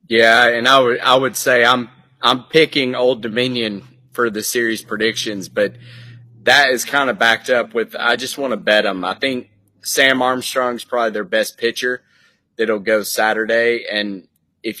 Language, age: English, 30-49